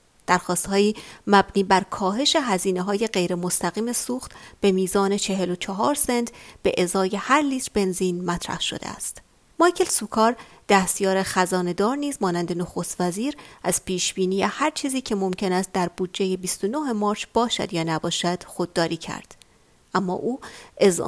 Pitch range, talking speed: 180-225 Hz, 135 wpm